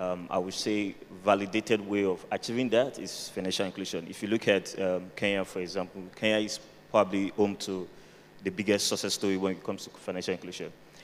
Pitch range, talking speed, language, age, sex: 95-105 Hz, 190 wpm, English, 20-39, male